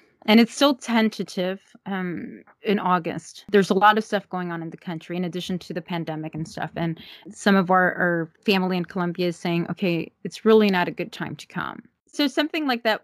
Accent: American